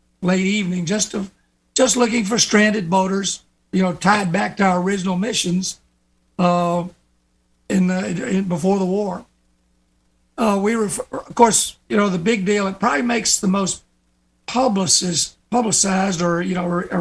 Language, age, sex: English, 50-69, male